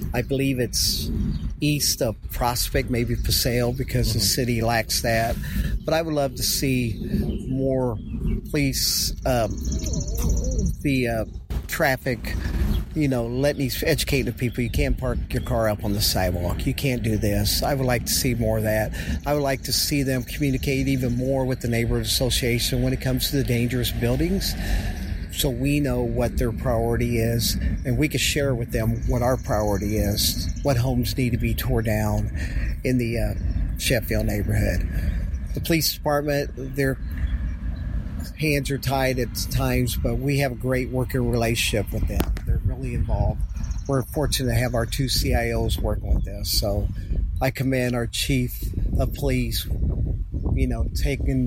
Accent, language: American, English